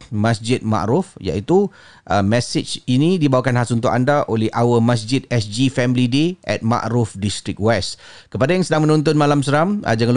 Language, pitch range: Malay, 100-125 Hz